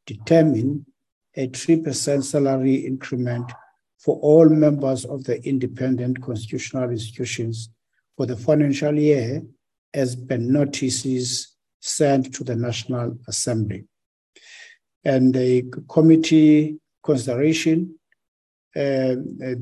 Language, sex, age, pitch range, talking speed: English, male, 60-79, 120-140 Hz, 90 wpm